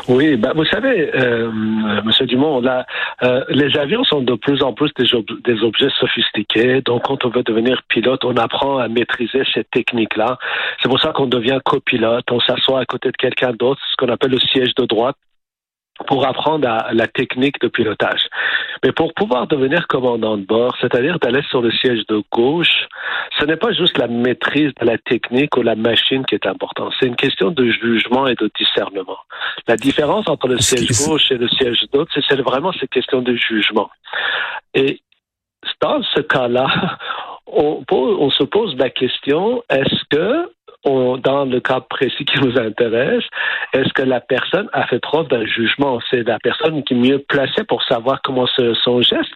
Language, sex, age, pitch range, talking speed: French, male, 50-69, 120-135 Hz, 190 wpm